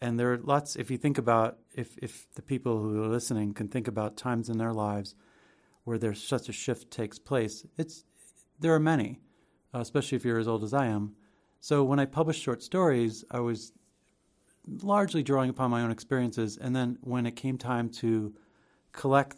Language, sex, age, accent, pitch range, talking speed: English, male, 40-59, American, 110-130 Hz, 195 wpm